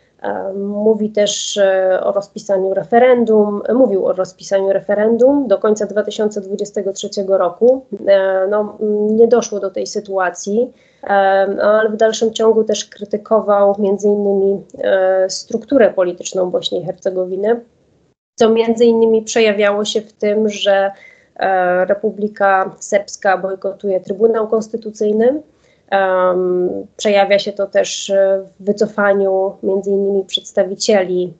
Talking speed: 105 wpm